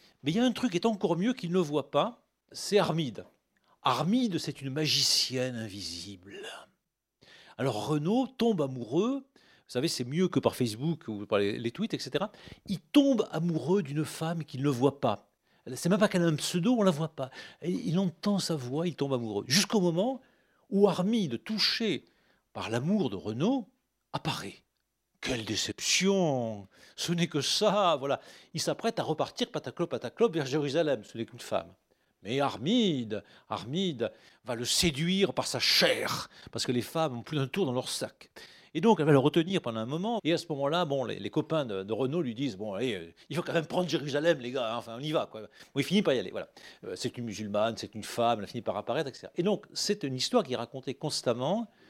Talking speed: 210 wpm